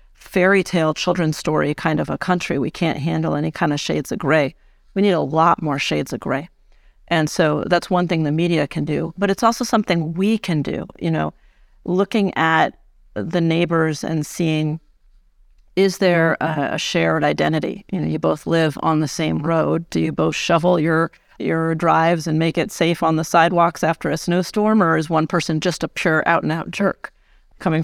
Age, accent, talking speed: 40-59, American, 195 wpm